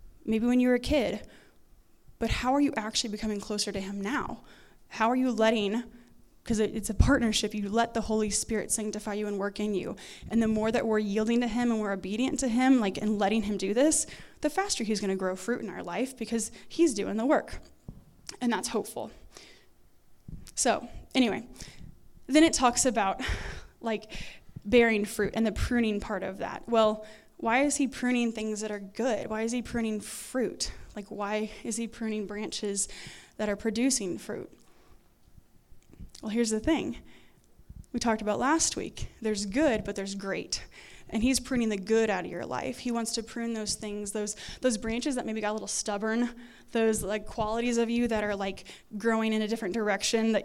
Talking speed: 195 wpm